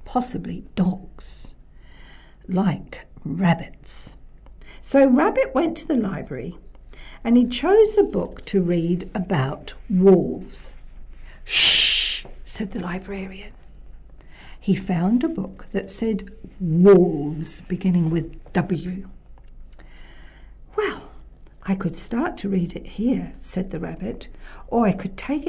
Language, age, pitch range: English, 60-79, 185-255 Hz